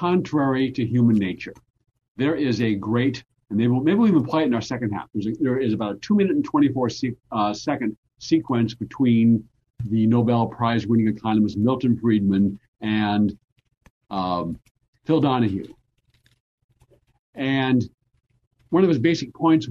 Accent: American